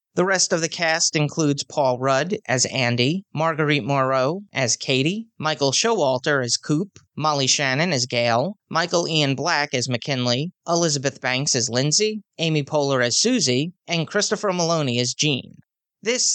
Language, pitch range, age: English, 130-170 Hz, 30-49